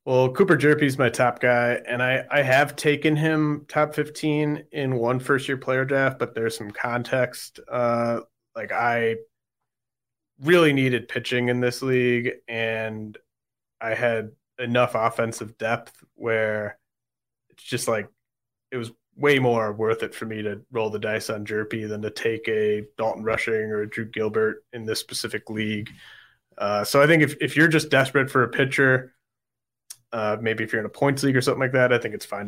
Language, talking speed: English, 185 wpm